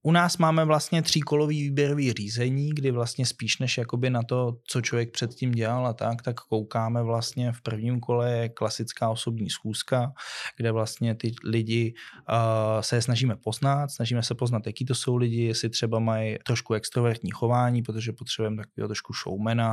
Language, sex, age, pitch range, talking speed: Czech, male, 20-39, 110-125 Hz, 170 wpm